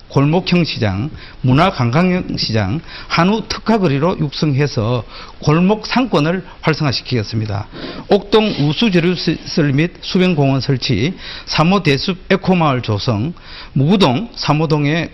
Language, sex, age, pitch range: Korean, male, 50-69, 130-185 Hz